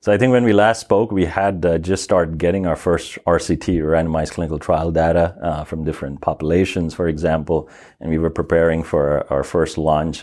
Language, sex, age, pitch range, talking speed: English, male, 30-49, 80-90 Hz, 200 wpm